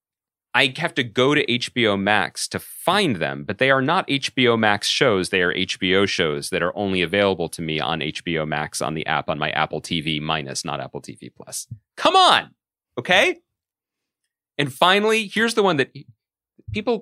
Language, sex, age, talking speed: English, male, 30-49, 185 wpm